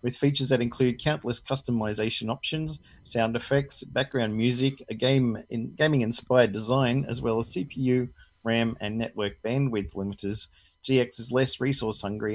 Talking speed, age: 140 wpm, 40-59